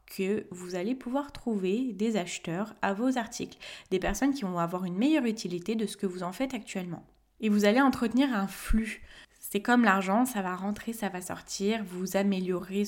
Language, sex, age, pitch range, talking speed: French, female, 20-39, 185-225 Hz, 195 wpm